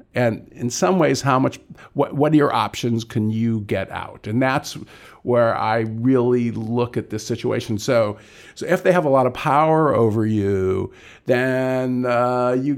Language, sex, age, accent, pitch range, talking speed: English, male, 50-69, American, 115-135 Hz, 180 wpm